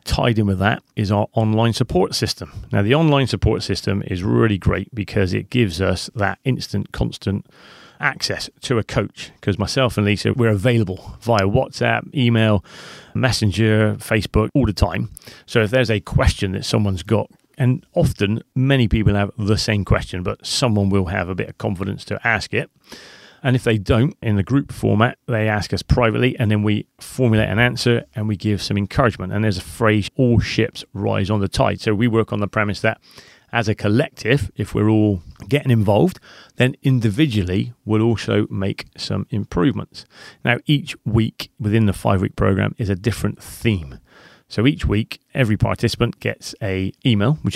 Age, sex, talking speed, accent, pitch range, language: 30-49, male, 180 wpm, British, 100-120 Hz, English